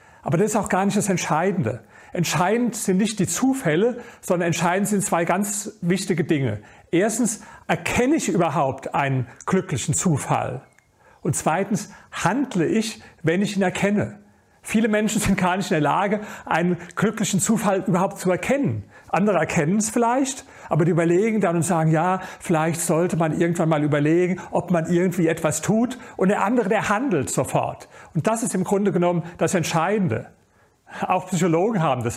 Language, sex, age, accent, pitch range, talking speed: German, male, 40-59, German, 165-205 Hz, 165 wpm